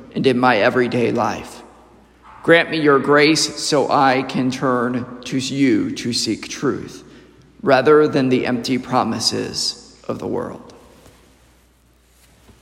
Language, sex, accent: English, male, American